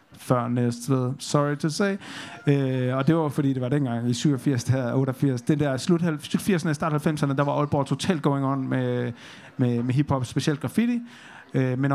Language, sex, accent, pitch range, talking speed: Danish, male, native, 125-155 Hz, 170 wpm